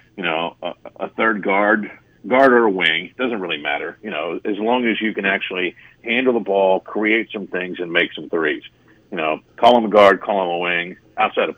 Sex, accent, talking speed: male, American, 225 wpm